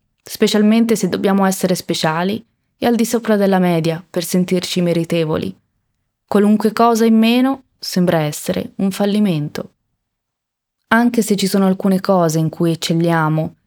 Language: Italian